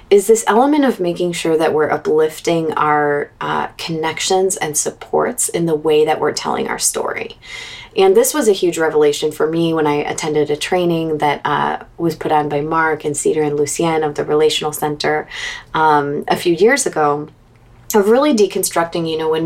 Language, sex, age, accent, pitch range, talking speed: English, female, 20-39, American, 155-210 Hz, 190 wpm